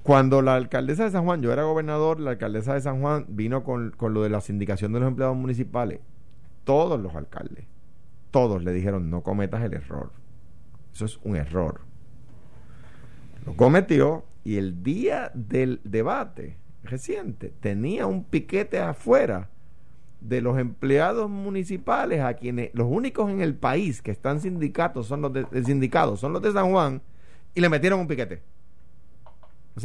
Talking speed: 155 wpm